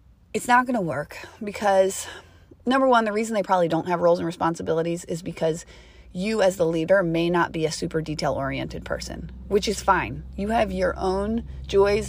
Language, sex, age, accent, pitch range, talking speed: English, female, 30-49, American, 165-235 Hz, 190 wpm